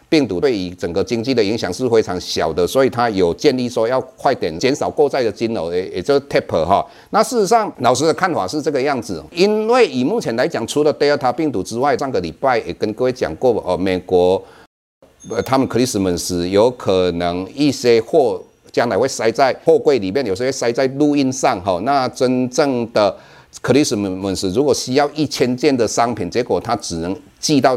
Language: Chinese